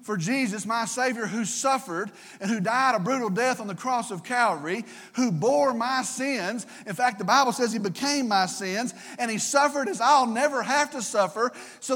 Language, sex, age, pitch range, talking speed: English, male, 40-59, 205-275 Hz, 200 wpm